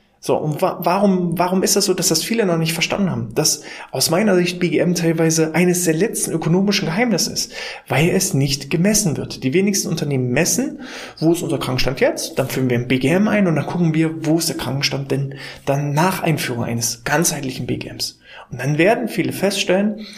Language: German